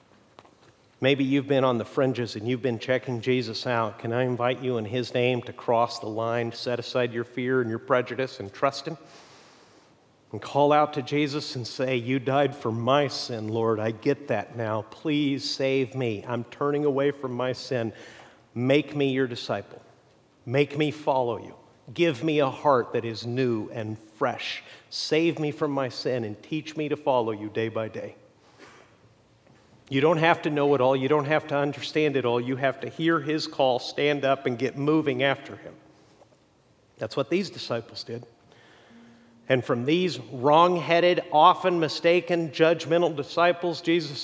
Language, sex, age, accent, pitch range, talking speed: English, male, 50-69, American, 120-150 Hz, 180 wpm